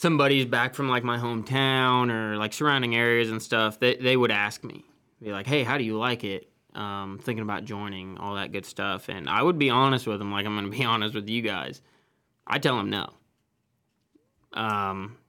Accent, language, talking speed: American, English, 210 wpm